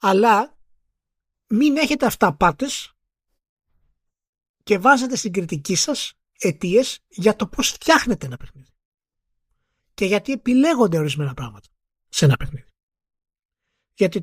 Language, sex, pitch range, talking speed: Greek, male, 175-265 Hz, 110 wpm